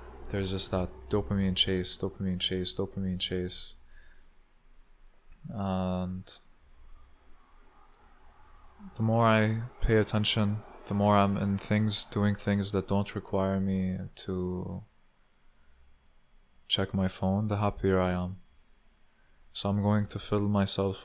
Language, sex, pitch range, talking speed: English, male, 95-105 Hz, 115 wpm